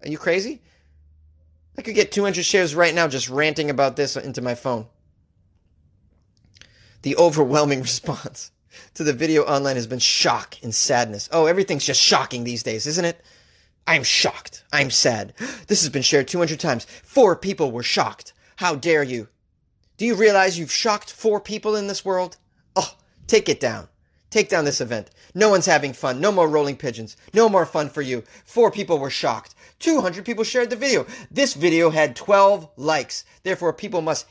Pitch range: 110-180 Hz